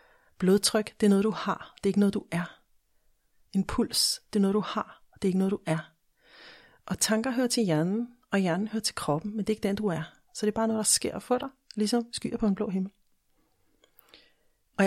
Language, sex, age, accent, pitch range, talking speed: Danish, female, 40-59, native, 185-220 Hz, 235 wpm